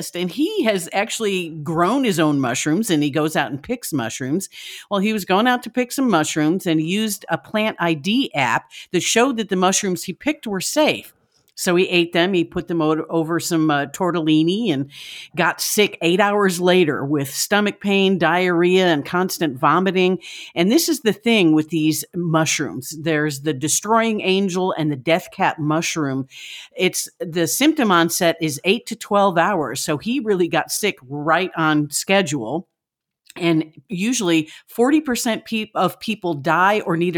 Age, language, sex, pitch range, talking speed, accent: 50-69, English, female, 155-205 Hz, 170 wpm, American